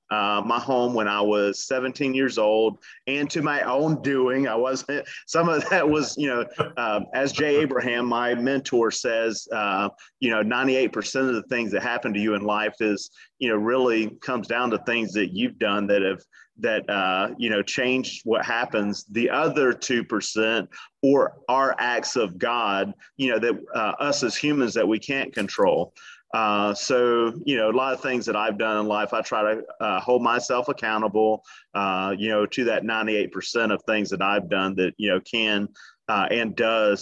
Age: 30-49